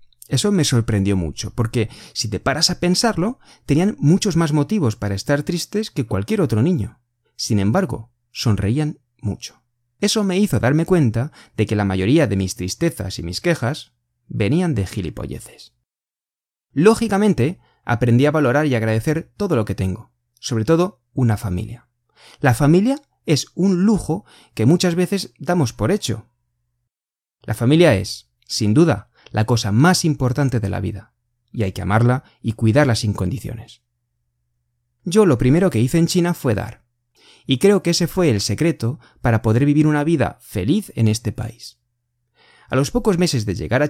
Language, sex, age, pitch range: Chinese, male, 30-49, 110-155 Hz